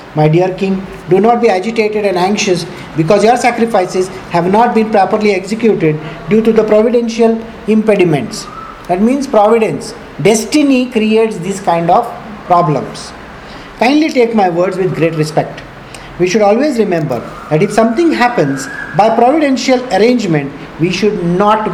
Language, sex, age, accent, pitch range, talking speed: English, male, 50-69, Indian, 185-245 Hz, 145 wpm